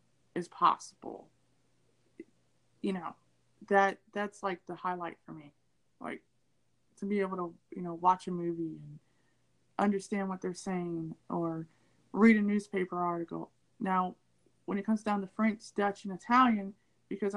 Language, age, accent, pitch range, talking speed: English, 20-39, American, 170-220 Hz, 145 wpm